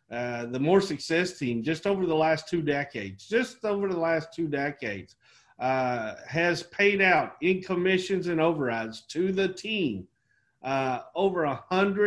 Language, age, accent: English, 50-69, American